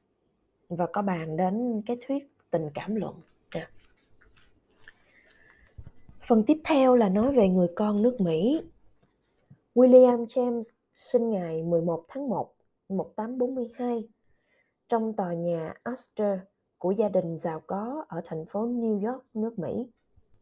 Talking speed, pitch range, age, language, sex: 125 wpm, 180-245 Hz, 20-39, Vietnamese, female